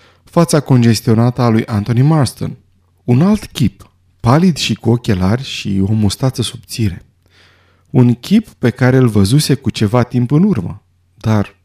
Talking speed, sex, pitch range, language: 150 wpm, male, 100-145 Hz, Romanian